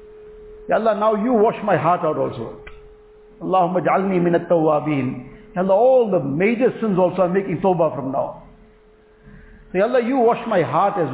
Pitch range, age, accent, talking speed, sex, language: 170-220 Hz, 50-69, Indian, 170 wpm, male, English